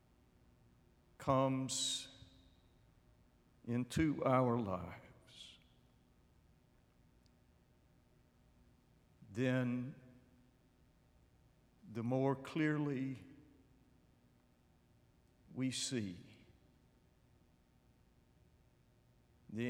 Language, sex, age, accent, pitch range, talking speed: English, male, 60-79, American, 90-130 Hz, 35 wpm